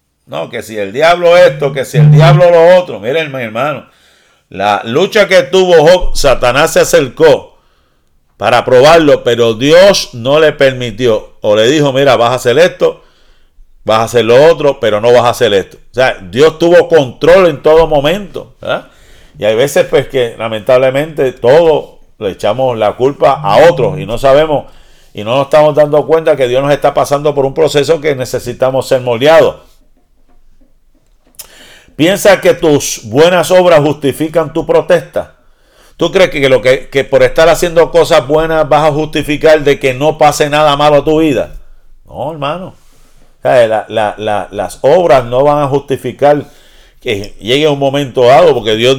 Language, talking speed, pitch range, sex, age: Spanish, 175 wpm, 130-195 Hz, male, 50-69